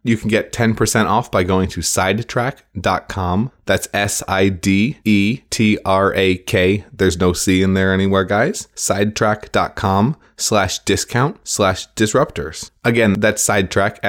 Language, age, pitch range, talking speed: English, 20-39, 90-110 Hz, 110 wpm